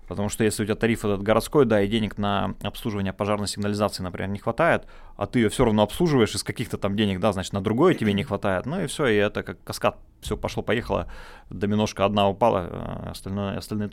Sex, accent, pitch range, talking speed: male, native, 95-115 Hz, 210 wpm